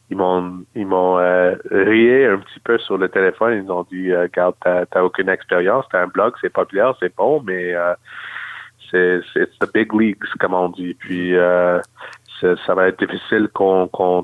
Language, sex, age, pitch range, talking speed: French, male, 30-49, 90-105 Hz, 205 wpm